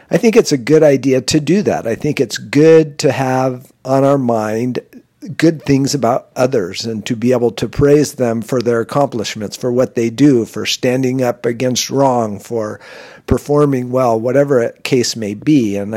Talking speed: 190 wpm